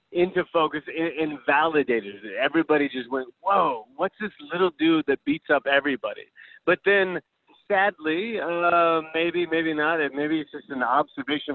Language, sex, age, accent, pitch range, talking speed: English, male, 30-49, American, 135-175 Hz, 150 wpm